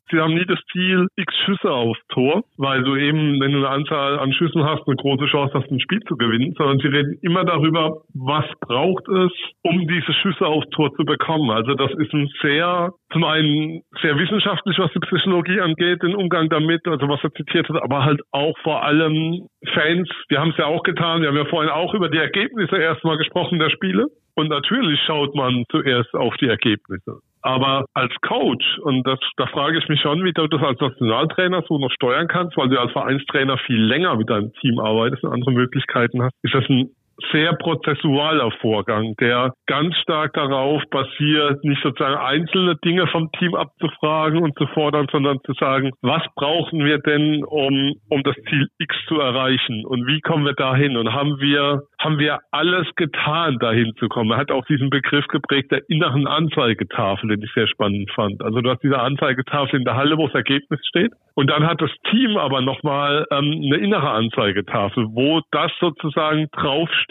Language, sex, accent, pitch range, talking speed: German, male, German, 135-165 Hz, 195 wpm